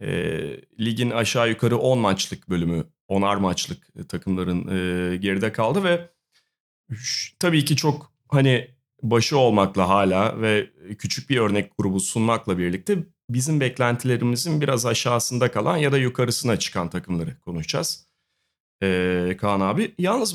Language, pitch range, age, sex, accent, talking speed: Turkish, 110-150 Hz, 40-59, male, native, 130 wpm